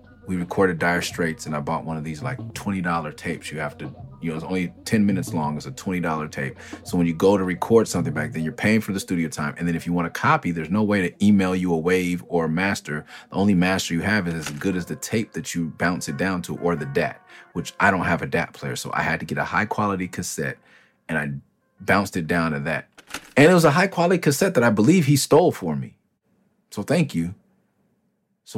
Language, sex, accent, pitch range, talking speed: English, male, American, 80-110 Hz, 255 wpm